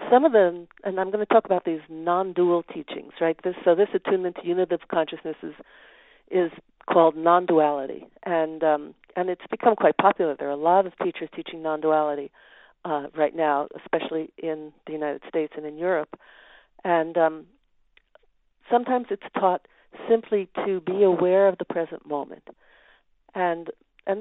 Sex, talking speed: female, 170 wpm